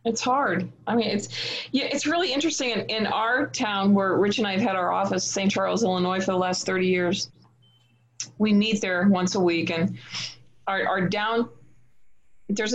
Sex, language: female, English